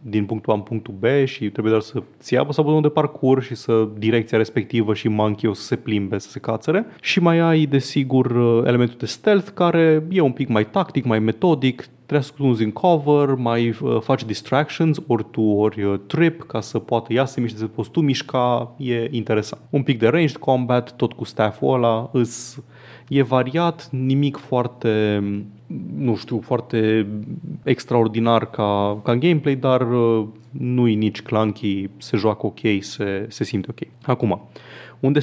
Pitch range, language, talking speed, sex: 105-135 Hz, Romanian, 165 wpm, male